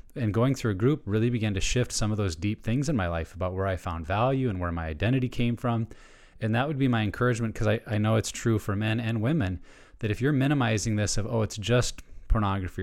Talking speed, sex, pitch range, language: 255 wpm, male, 100-120 Hz, English